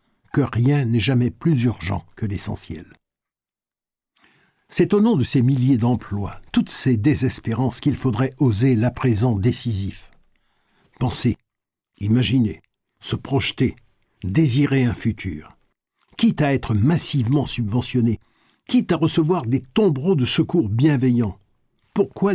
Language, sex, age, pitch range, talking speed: French, male, 60-79, 115-150 Hz, 120 wpm